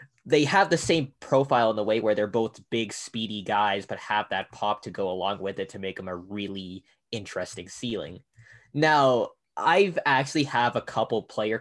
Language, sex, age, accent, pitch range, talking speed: English, male, 10-29, American, 100-130 Hz, 190 wpm